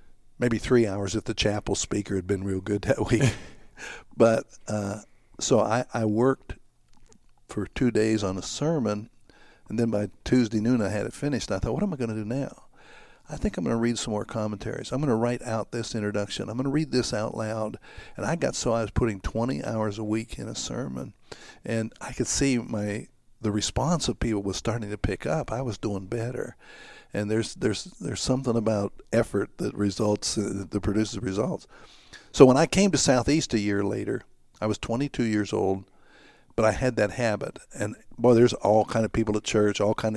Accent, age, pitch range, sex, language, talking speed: American, 60-79, 100-120 Hz, male, English, 210 wpm